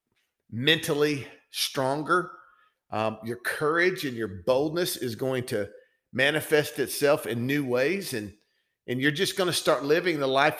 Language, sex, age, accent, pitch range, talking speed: English, male, 50-69, American, 115-150 Hz, 145 wpm